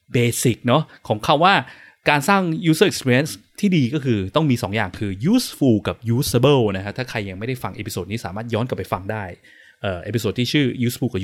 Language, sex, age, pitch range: Thai, male, 20-39, 110-155 Hz